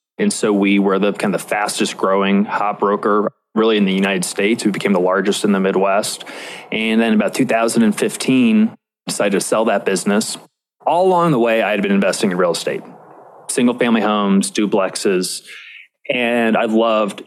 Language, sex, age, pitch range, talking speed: English, male, 20-39, 100-125 Hz, 175 wpm